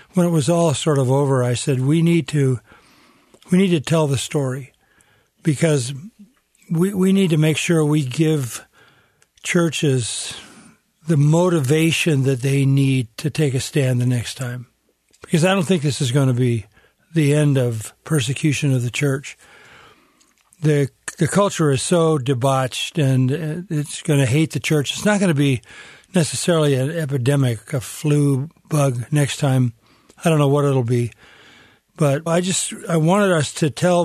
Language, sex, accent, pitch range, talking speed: English, male, American, 135-165 Hz, 170 wpm